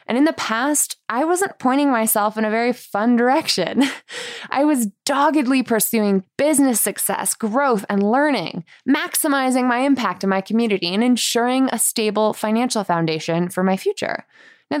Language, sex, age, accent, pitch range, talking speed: English, female, 20-39, American, 205-270 Hz, 155 wpm